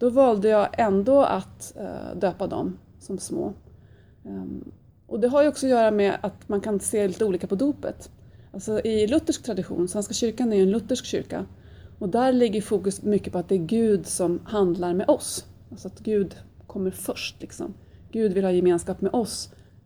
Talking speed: 185 wpm